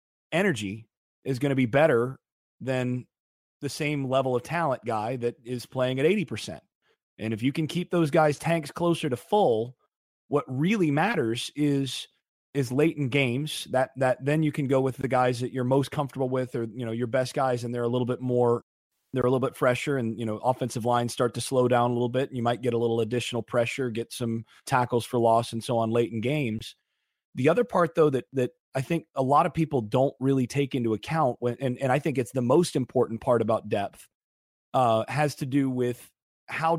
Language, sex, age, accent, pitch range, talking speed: English, male, 30-49, American, 120-155 Hz, 215 wpm